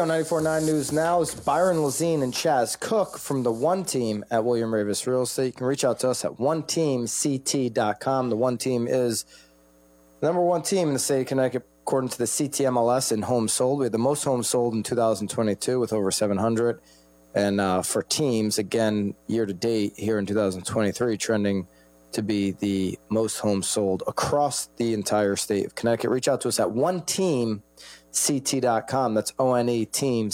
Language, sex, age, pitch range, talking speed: English, male, 30-49, 105-130 Hz, 190 wpm